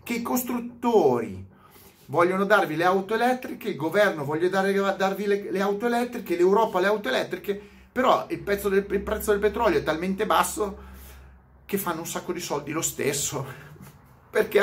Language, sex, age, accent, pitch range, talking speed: Italian, male, 30-49, native, 125-195 Hz, 155 wpm